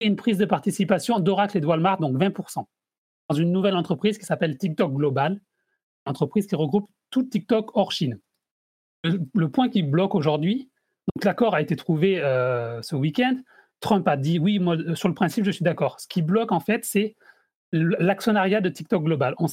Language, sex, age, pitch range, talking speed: French, male, 30-49, 175-220 Hz, 195 wpm